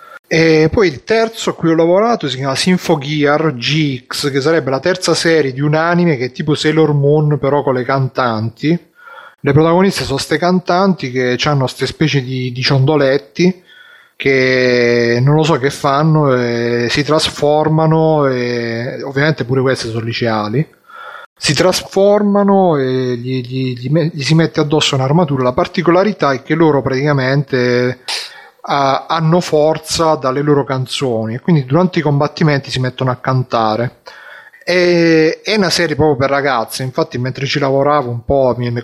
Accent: native